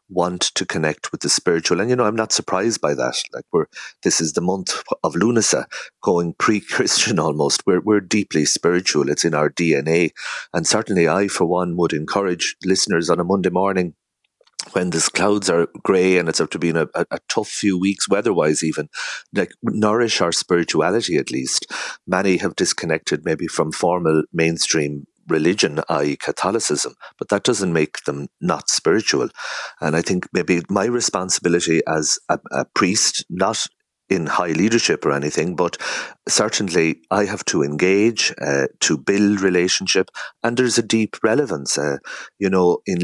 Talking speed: 170 wpm